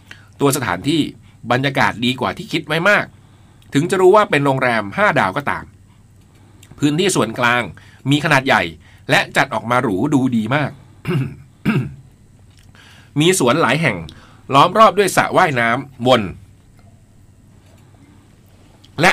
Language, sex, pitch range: Thai, male, 105-145 Hz